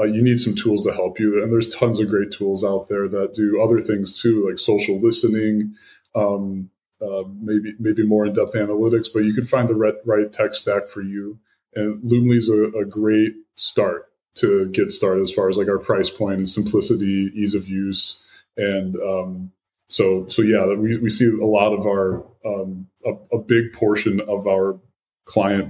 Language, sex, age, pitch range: English, female, 20-39, 100-120 Hz